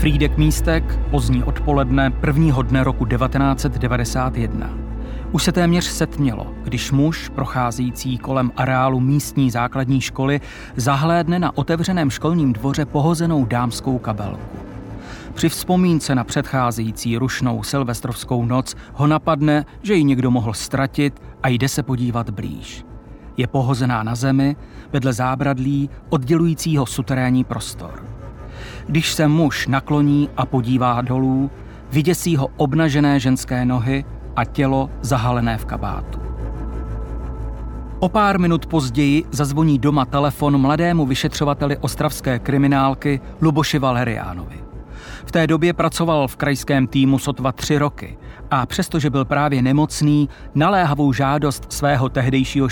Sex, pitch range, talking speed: male, 125-150 Hz, 120 wpm